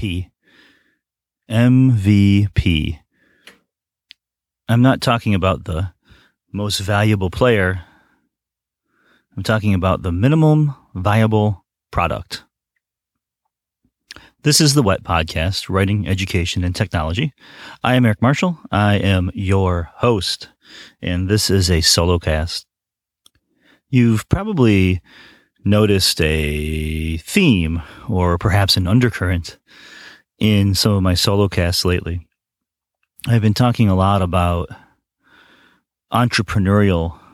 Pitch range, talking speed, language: 90-105 Hz, 100 wpm, English